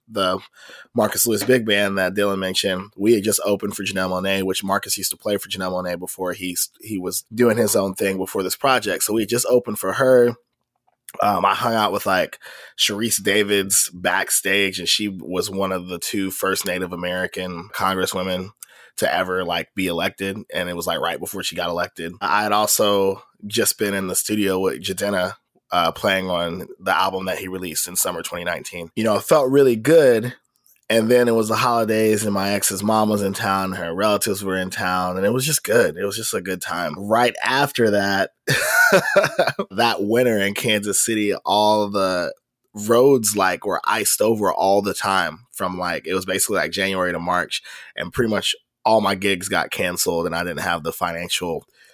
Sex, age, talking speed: male, 20-39, 200 wpm